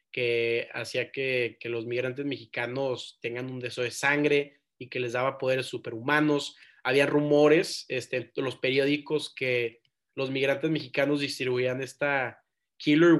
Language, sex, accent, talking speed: Spanish, male, Mexican, 140 wpm